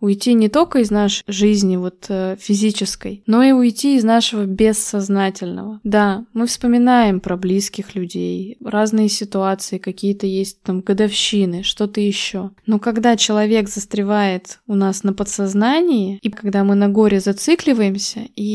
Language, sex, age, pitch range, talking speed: Russian, female, 20-39, 200-235 Hz, 140 wpm